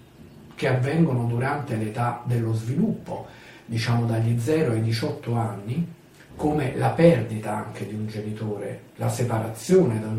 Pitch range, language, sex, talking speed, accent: 115-170 Hz, Italian, male, 135 wpm, native